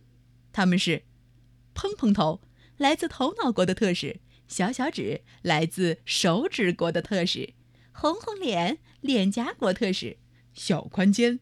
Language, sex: Chinese, female